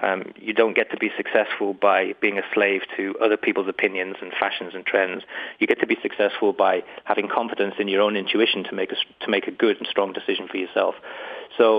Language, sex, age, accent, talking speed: English, male, 30-49, British, 225 wpm